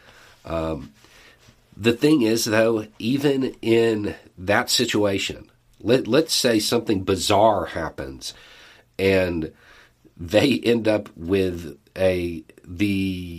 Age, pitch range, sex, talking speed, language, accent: 40-59, 90-115 Hz, male, 100 wpm, English, American